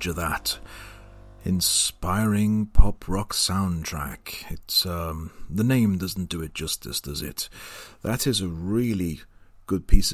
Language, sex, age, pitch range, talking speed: English, male, 40-59, 85-110 Hz, 130 wpm